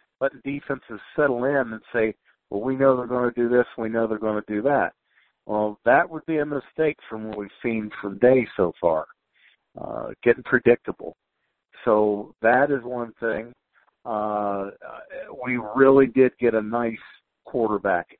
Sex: male